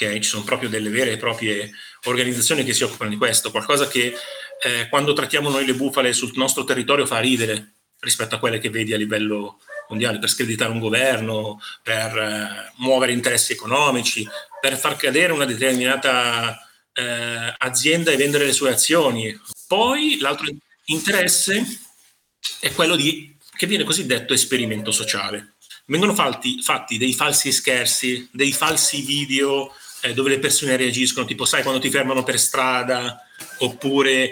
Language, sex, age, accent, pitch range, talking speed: Italian, male, 30-49, native, 120-160 Hz, 155 wpm